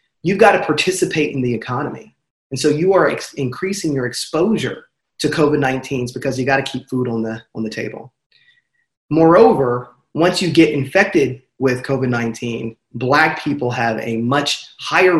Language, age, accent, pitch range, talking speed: English, 30-49, American, 120-150 Hz, 160 wpm